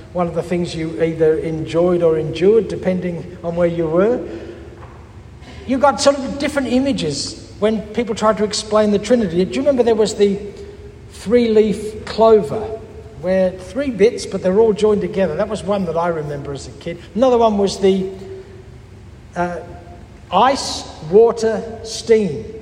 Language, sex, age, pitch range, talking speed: English, male, 60-79, 170-225 Hz, 160 wpm